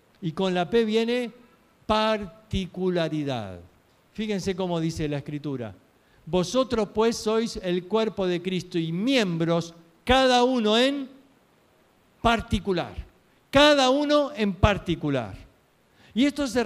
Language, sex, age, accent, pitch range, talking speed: Spanish, male, 50-69, Argentinian, 160-230 Hz, 110 wpm